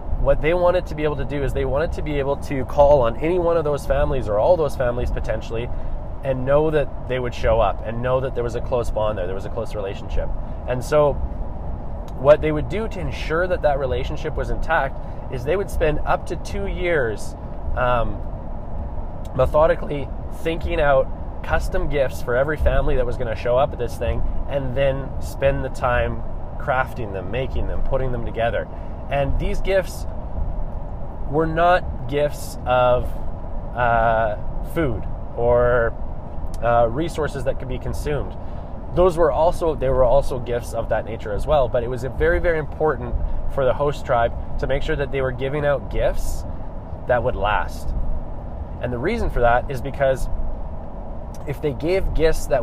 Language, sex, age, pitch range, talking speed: English, male, 20-39, 85-140 Hz, 185 wpm